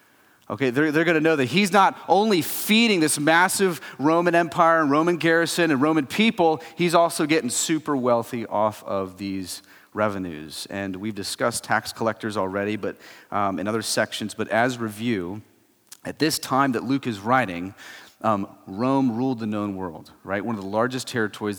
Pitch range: 105-155 Hz